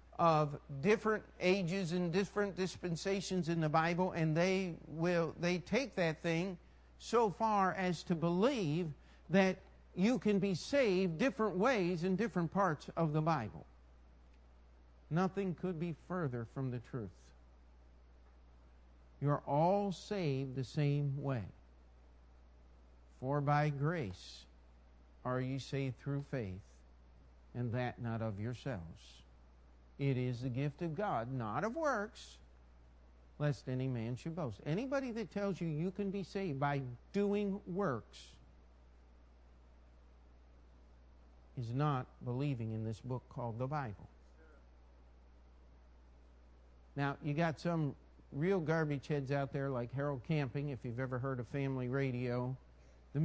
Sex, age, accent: male, 50-69, American